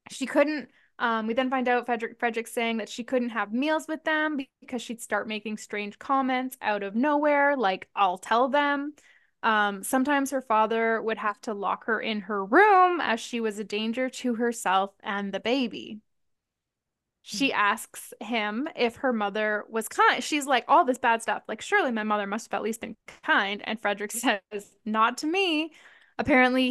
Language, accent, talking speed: English, American, 185 wpm